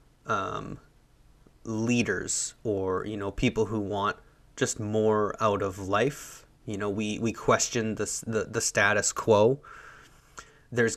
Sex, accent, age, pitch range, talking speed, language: male, American, 20-39, 100-125 Hz, 130 wpm, English